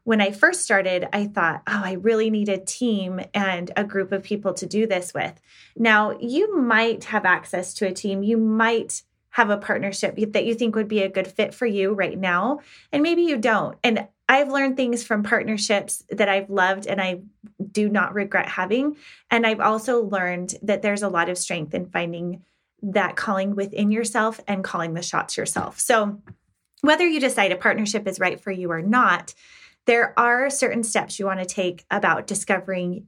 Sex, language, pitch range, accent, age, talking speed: female, English, 185-225 Hz, American, 20-39, 195 wpm